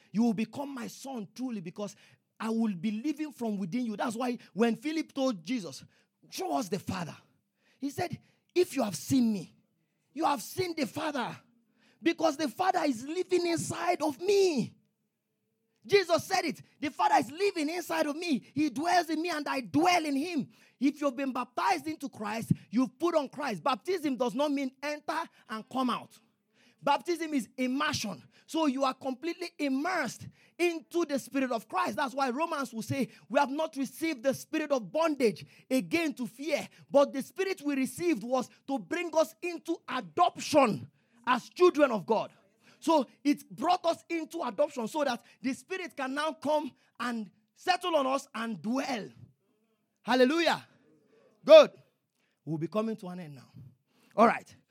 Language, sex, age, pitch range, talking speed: English, male, 30-49, 230-315 Hz, 170 wpm